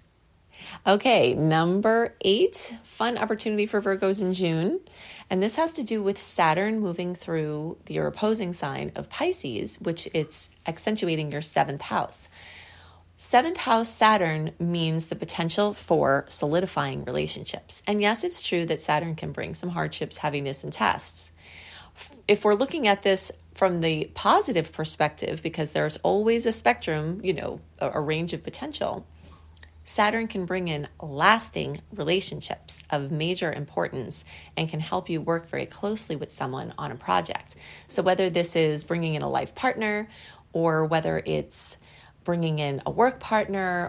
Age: 30-49